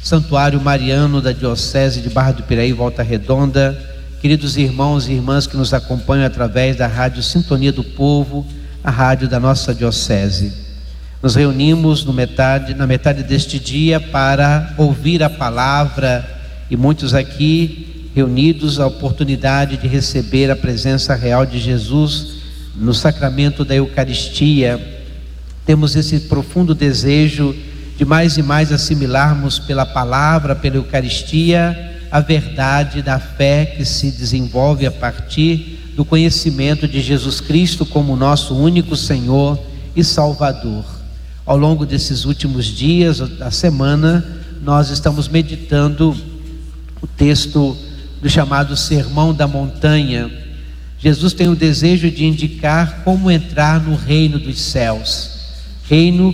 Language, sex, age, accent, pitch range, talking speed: Portuguese, male, 50-69, Brazilian, 125-150 Hz, 130 wpm